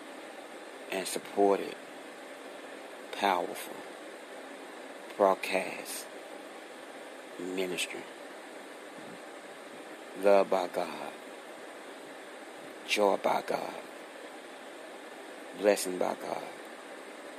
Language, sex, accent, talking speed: English, male, American, 50 wpm